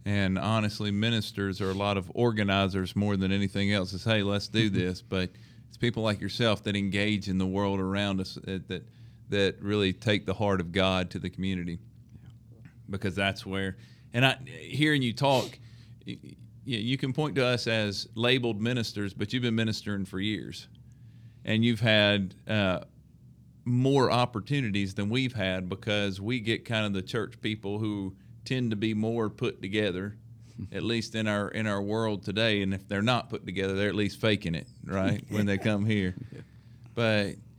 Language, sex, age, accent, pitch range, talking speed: English, male, 40-59, American, 95-115 Hz, 175 wpm